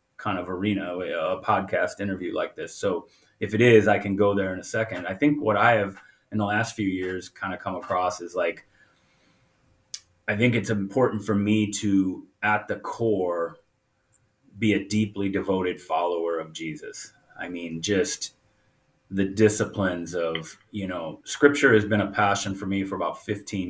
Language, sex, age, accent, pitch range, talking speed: English, male, 30-49, American, 90-110 Hz, 175 wpm